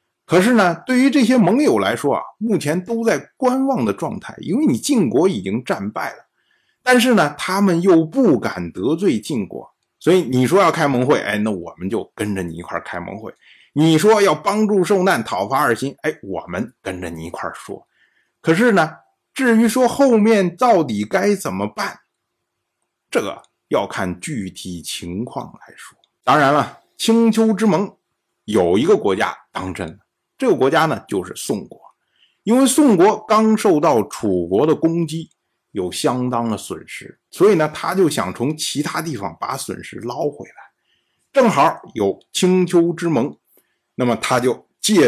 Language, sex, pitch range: Chinese, male, 135-225 Hz